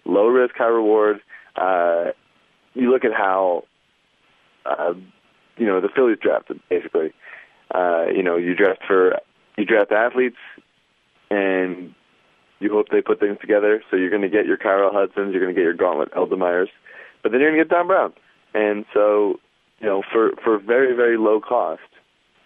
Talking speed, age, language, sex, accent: 175 wpm, 30-49, English, male, American